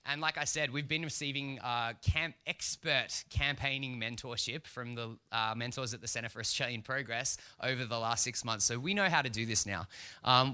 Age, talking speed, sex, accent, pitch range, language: 20-39, 200 wpm, male, Australian, 115-140 Hz, English